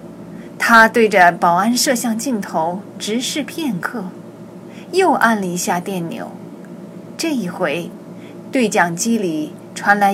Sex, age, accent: female, 20-39, native